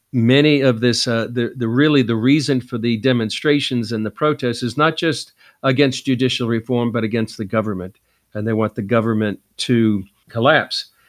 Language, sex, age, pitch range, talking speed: English, male, 50-69, 110-130 Hz, 175 wpm